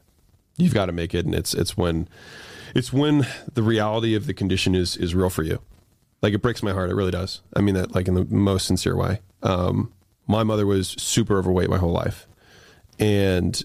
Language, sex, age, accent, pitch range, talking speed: English, male, 30-49, American, 95-120 Hz, 210 wpm